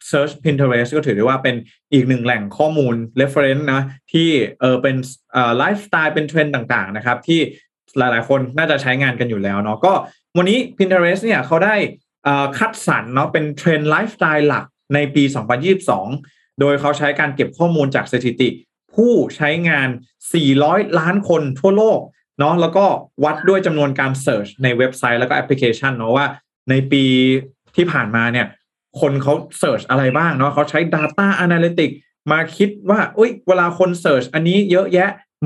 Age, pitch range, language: 20-39, 130-170 Hz, Thai